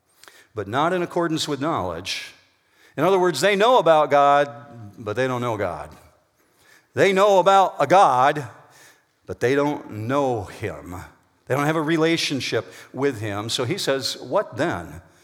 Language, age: English, 50-69